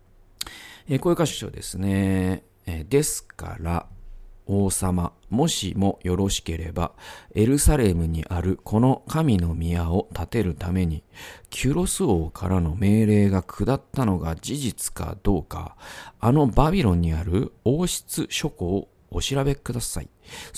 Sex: male